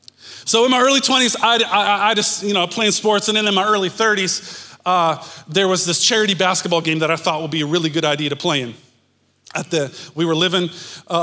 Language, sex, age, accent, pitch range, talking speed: English, male, 30-49, American, 165-215 Hz, 235 wpm